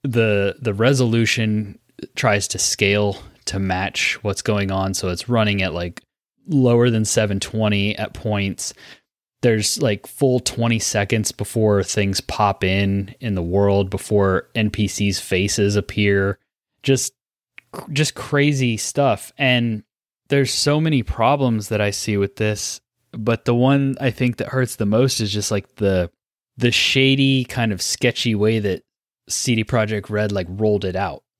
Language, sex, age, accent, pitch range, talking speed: English, male, 20-39, American, 100-125 Hz, 150 wpm